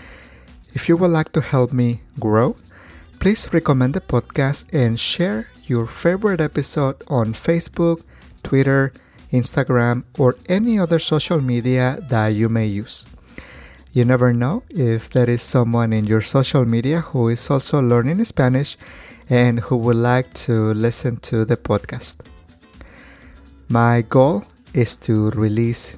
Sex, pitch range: male, 115-140 Hz